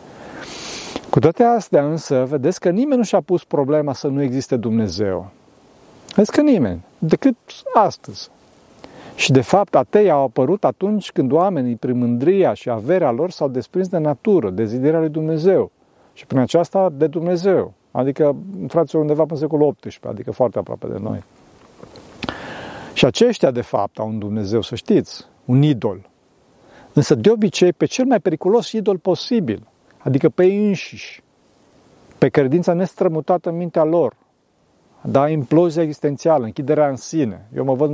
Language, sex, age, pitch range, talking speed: Romanian, male, 40-59, 135-190 Hz, 150 wpm